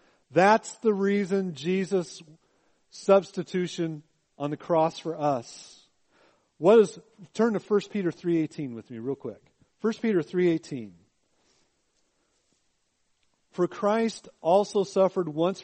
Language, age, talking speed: English, 40-59, 105 wpm